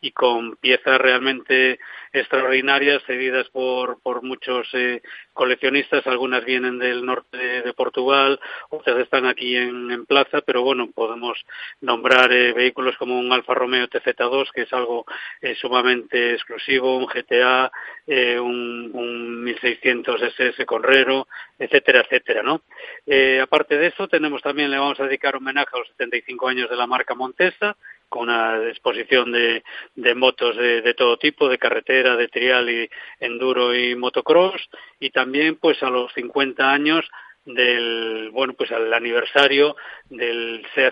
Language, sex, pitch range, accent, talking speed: Spanish, male, 125-140 Hz, Spanish, 150 wpm